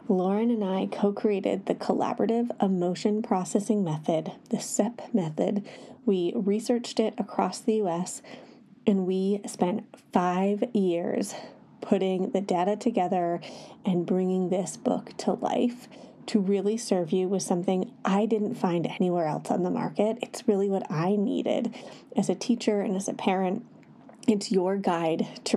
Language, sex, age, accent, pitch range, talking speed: English, female, 30-49, American, 195-235 Hz, 150 wpm